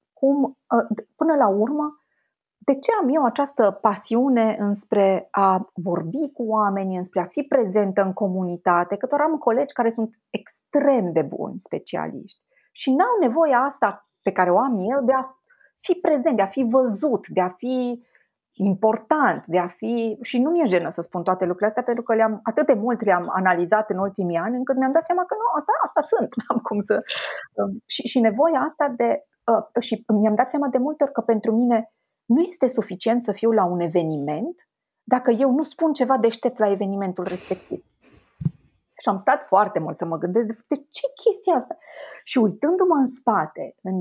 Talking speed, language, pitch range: 185 wpm, Romanian, 190-255 Hz